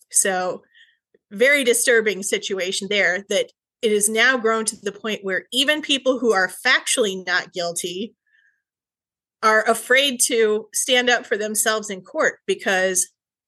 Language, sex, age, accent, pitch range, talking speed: English, female, 30-49, American, 200-255 Hz, 140 wpm